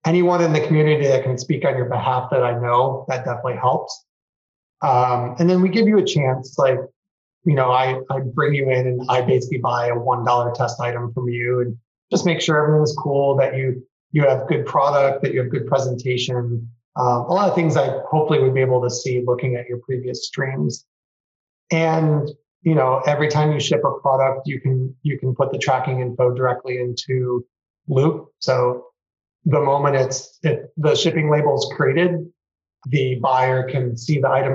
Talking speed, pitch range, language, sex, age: 195 wpm, 125-155 Hz, English, male, 30-49